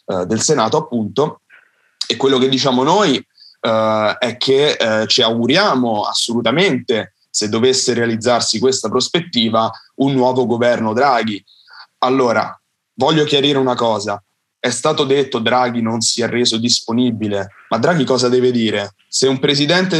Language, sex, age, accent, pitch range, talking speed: Italian, male, 30-49, native, 115-140 Hz, 140 wpm